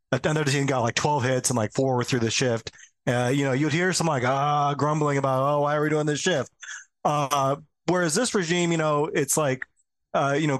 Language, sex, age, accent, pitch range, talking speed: English, male, 30-49, American, 130-150 Hz, 230 wpm